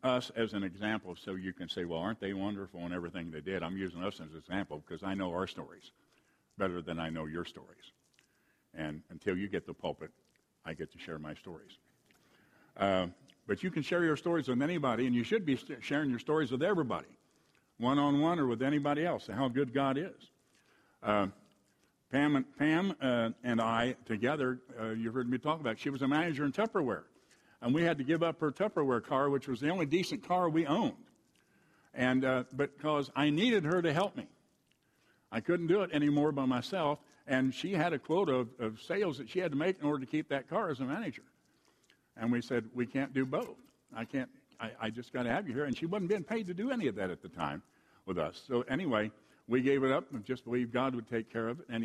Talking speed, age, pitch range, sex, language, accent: 230 wpm, 50-69, 110-150 Hz, male, English, American